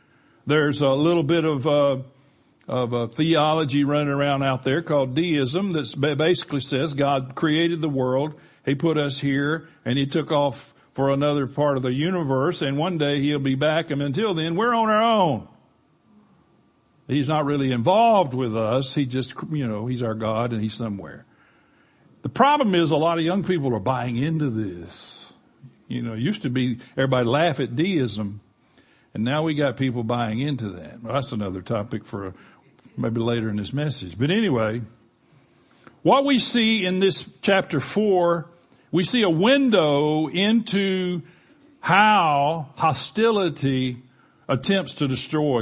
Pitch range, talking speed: 125-170 Hz, 160 wpm